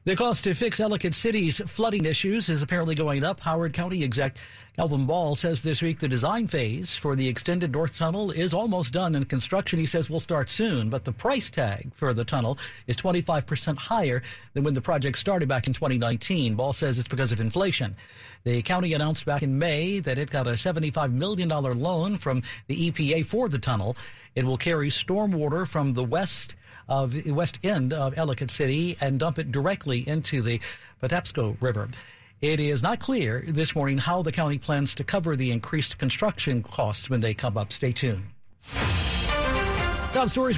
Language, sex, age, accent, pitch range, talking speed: English, male, 50-69, American, 130-175 Hz, 190 wpm